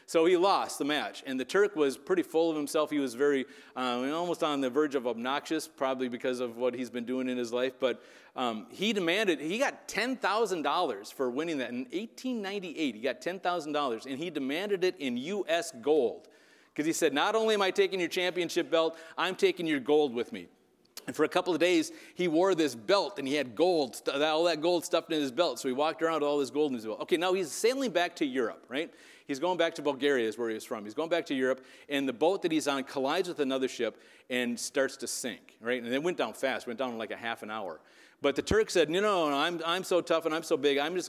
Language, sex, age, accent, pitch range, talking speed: English, male, 40-59, American, 135-190 Hz, 250 wpm